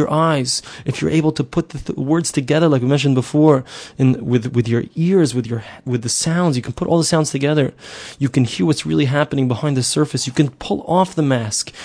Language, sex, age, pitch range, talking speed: English, male, 20-39, 140-175 Hz, 220 wpm